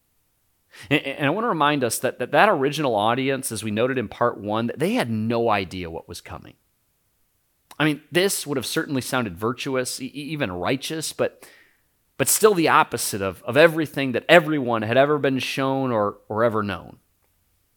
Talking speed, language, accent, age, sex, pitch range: 180 wpm, English, American, 30-49, male, 95-145 Hz